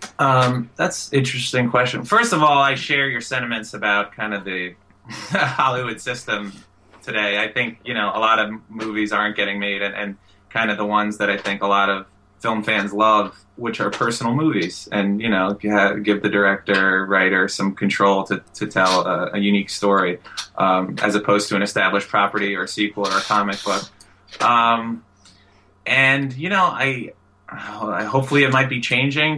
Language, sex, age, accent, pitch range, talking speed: English, male, 20-39, American, 100-125 Hz, 190 wpm